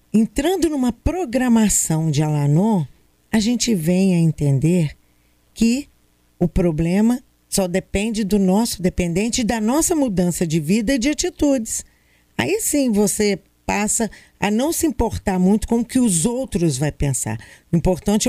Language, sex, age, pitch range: Portuguese, female, 50-69, 155-220 Hz